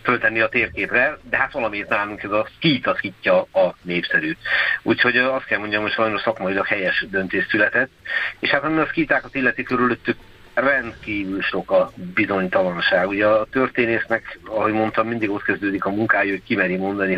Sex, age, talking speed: male, 50-69, 165 wpm